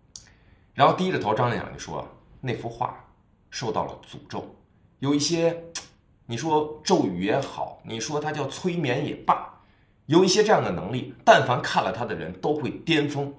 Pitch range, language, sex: 115-185 Hz, Chinese, male